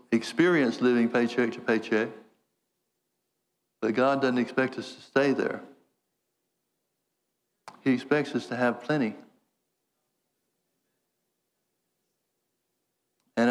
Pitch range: 120-135 Hz